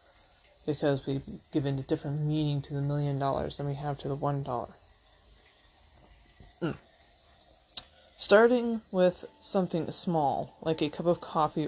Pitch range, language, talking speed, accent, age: 140-175 Hz, English, 145 wpm, American, 20-39